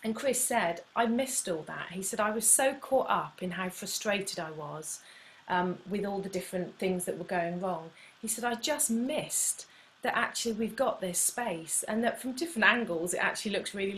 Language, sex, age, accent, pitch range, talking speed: English, female, 30-49, British, 180-220 Hz, 210 wpm